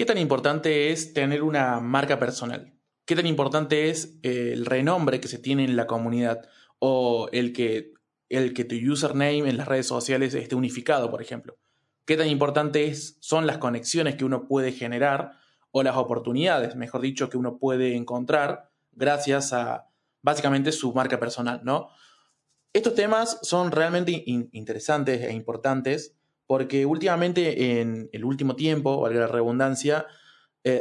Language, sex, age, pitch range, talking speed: Spanish, male, 20-39, 125-150 Hz, 150 wpm